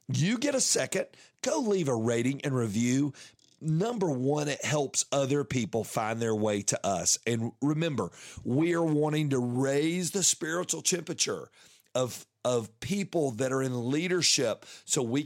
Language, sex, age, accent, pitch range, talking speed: English, male, 40-59, American, 120-165 Hz, 155 wpm